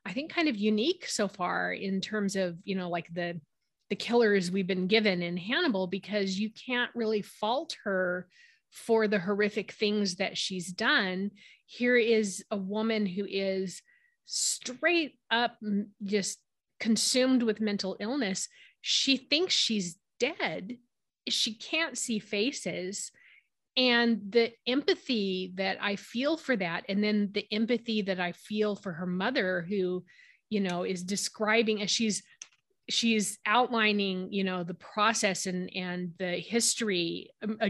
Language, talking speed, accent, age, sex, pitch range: English, 145 wpm, American, 30-49, female, 190-230 Hz